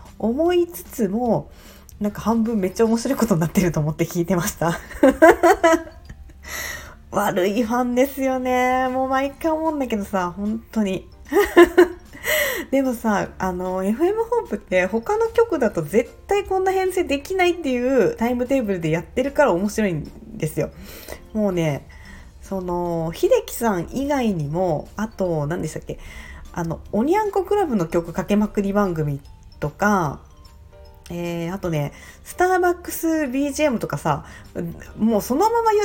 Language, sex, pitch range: Japanese, female, 170-285 Hz